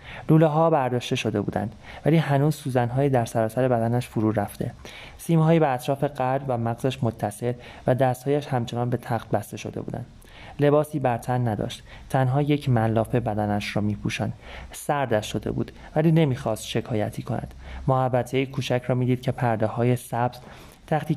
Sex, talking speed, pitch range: male, 140 wpm, 110-135 Hz